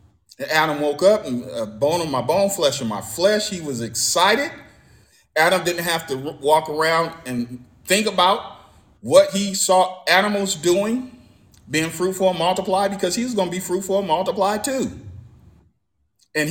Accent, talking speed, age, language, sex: American, 165 wpm, 40-59, English, male